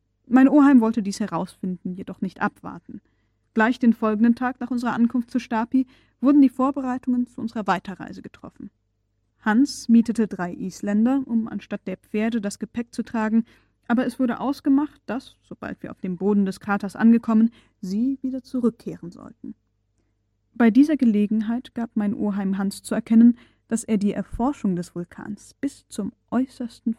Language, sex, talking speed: German, female, 160 wpm